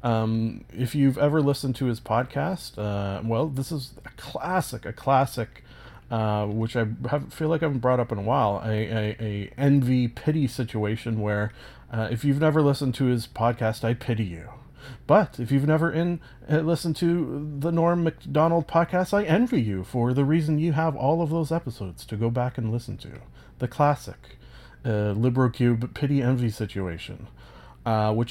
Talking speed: 180 wpm